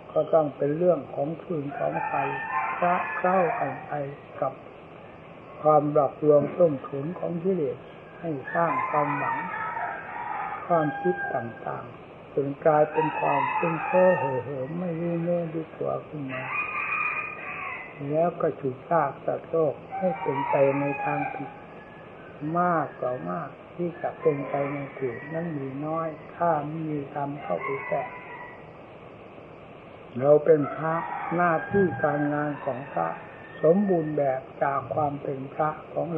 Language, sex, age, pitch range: Thai, male, 60-79, 145-175 Hz